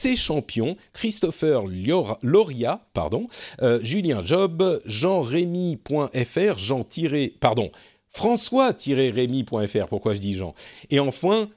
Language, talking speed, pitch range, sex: French, 90 wpm, 110-165 Hz, male